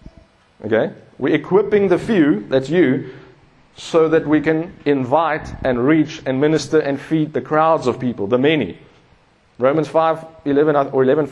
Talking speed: 145 wpm